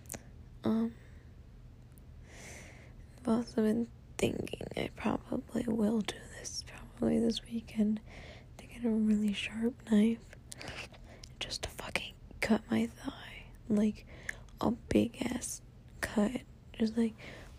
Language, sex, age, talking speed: English, female, 20-39, 110 wpm